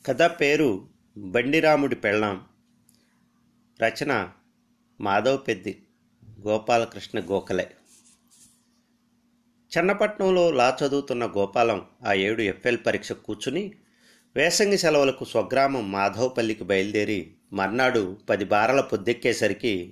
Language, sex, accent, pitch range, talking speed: Telugu, male, native, 110-160 Hz, 80 wpm